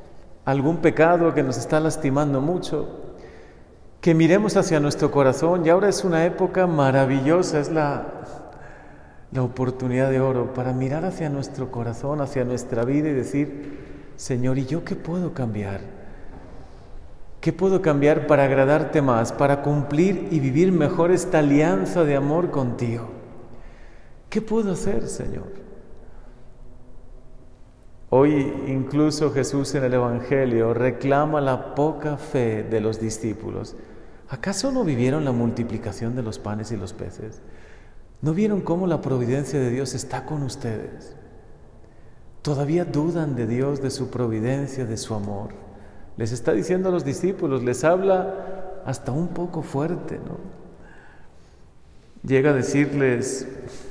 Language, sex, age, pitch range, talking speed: Spanish, male, 40-59, 125-160 Hz, 135 wpm